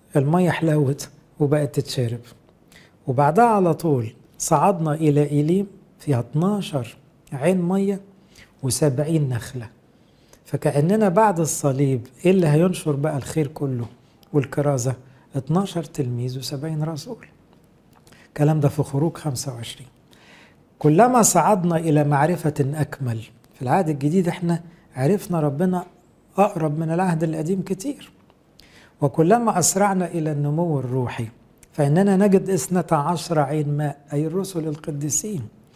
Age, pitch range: 60-79, 140-175 Hz